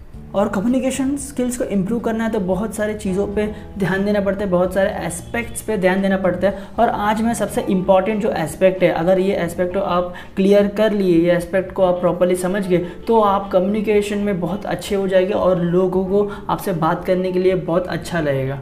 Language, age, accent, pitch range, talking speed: English, 20-39, Indian, 175-205 Hz, 195 wpm